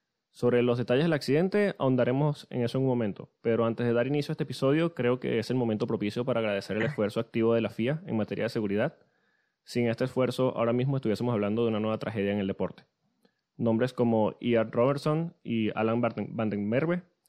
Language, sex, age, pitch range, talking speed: Spanish, male, 20-39, 110-130 Hz, 200 wpm